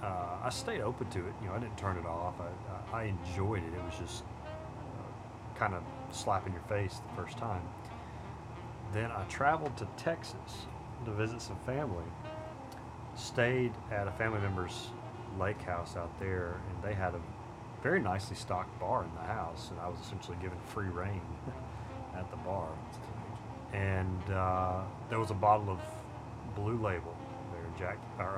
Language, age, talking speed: English, 30-49, 170 wpm